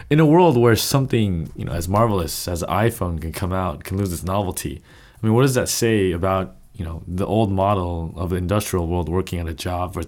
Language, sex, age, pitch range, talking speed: English, male, 20-39, 95-120 Hz, 230 wpm